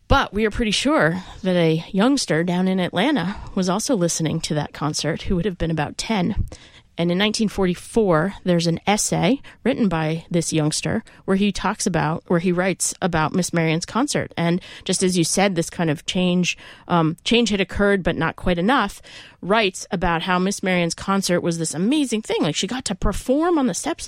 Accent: American